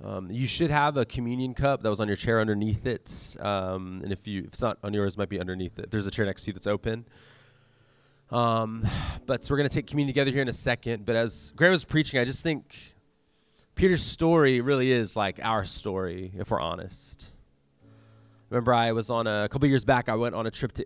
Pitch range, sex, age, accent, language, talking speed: 95-125 Hz, male, 20-39, American, English, 235 wpm